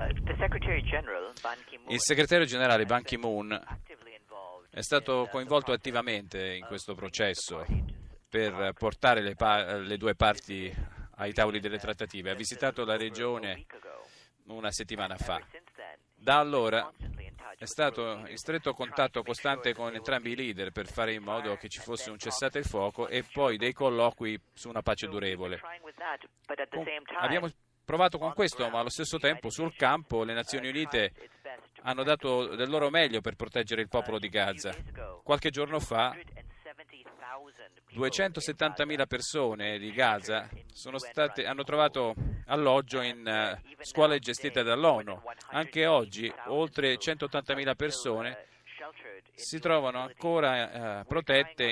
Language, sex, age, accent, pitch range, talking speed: Italian, male, 40-59, native, 110-140 Hz, 125 wpm